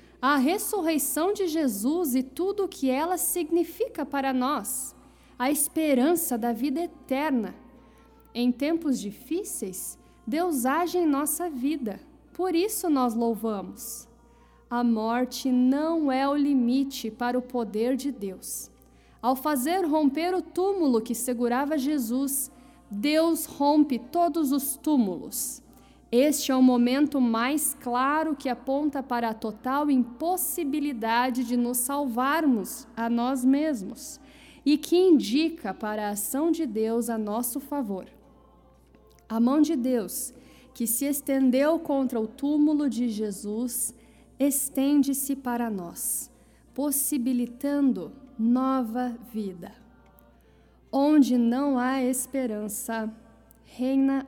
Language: Portuguese